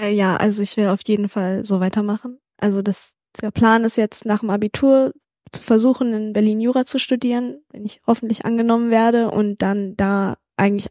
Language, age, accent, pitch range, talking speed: German, 10-29, German, 210-235 Hz, 185 wpm